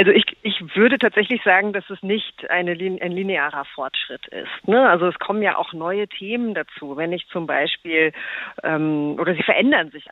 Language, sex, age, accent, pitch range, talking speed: German, female, 40-59, German, 160-190 Hz, 190 wpm